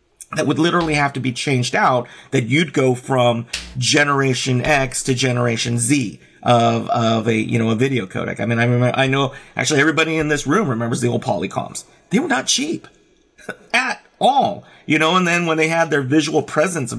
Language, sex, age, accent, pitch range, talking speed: English, male, 40-59, American, 125-165 Hz, 200 wpm